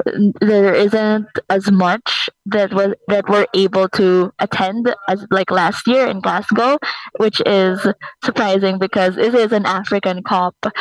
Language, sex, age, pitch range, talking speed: German, female, 20-39, 190-220 Hz, 145 wpm